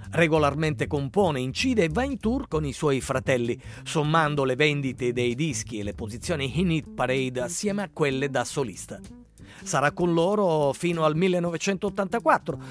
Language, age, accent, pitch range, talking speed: Italian, 40-59, native, 135-200 Hz, 155 wpm